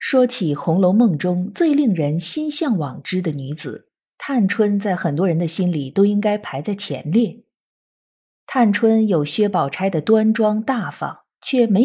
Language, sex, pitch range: Chinese, female, 175-245 Hz